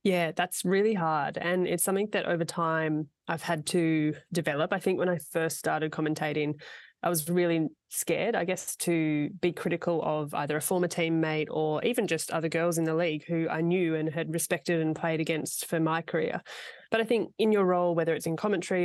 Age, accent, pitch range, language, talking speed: 20-39, Australian, 160-180 Hz, English, 205 wpm